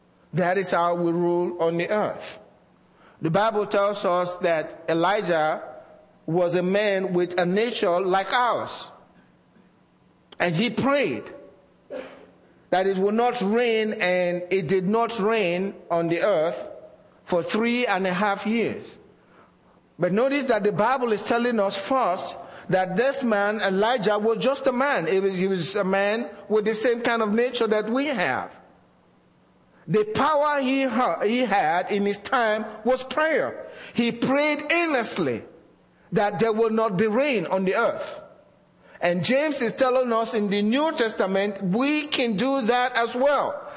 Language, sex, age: English, male, 50-69